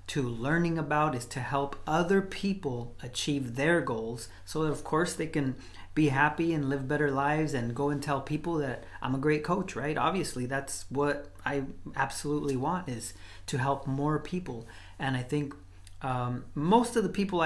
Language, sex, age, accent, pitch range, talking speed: English, male, 30-49, American, 120-155 Hz, 180 wpm